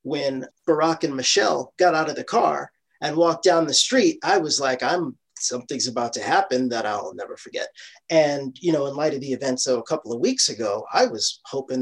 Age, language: 40-59, English